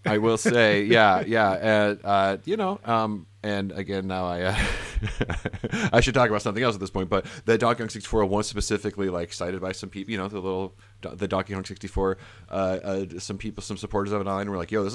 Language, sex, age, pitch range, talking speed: English, male, 30-49, 80-105 Hz, 235 wpm